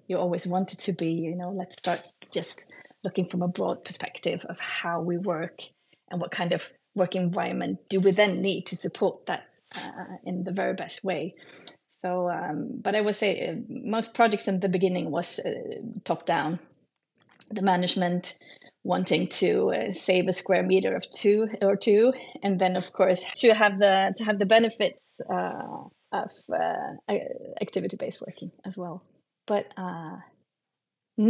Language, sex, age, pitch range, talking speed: English, female, 30-49, 180-220 Hz, 165 wpm